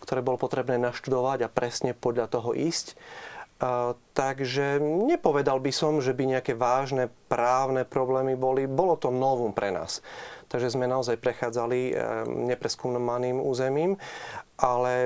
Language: Slovak